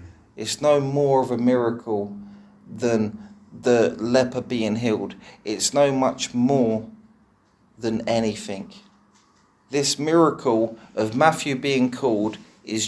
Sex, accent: male, British